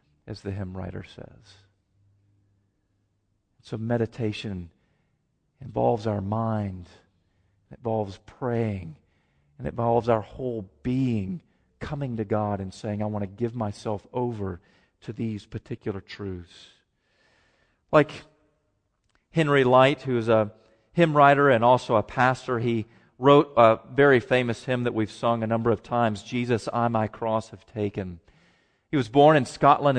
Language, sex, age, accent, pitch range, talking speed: English, male, 40-59, American, 105-140 Hz, 140 wpm